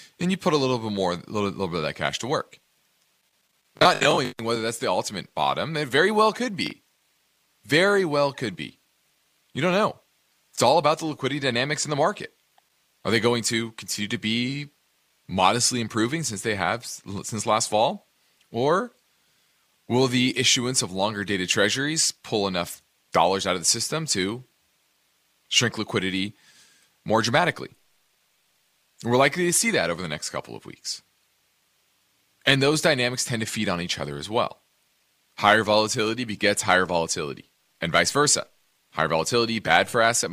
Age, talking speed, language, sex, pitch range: 30-49, 170 wpm, English, male, 100-130 Hz